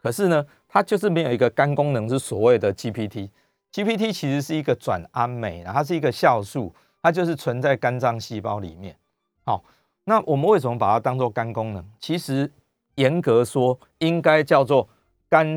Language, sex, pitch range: Chinese, male, 110-150 Hz